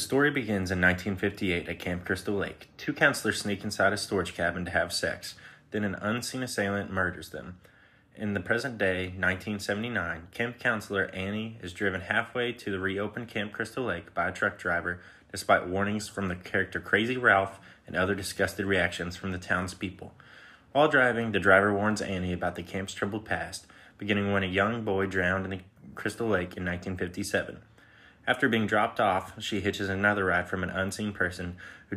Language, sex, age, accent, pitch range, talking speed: English, male, 20-39, American, 90-105 Hz, 180 wpm